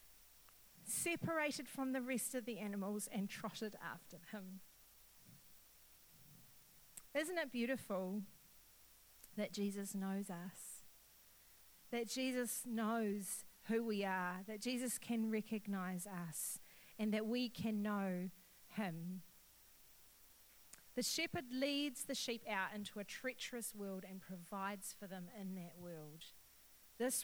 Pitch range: 185-235 Hz